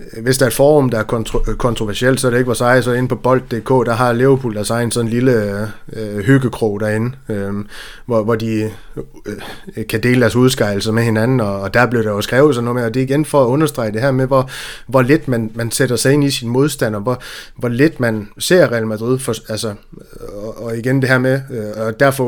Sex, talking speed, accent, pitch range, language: male, 240 wpm, native, 110-130 Hz, Danish